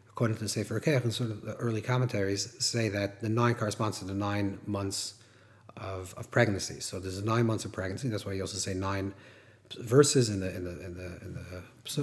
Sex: male